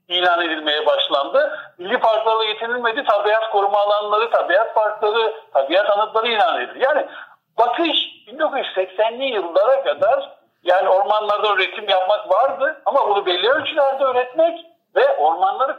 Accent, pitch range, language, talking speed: native, 180-285 Hz, Turkish, 120 wpm